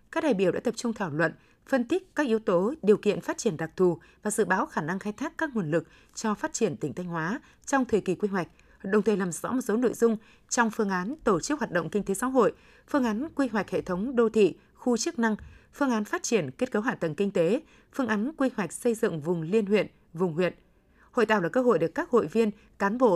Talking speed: 265 wpm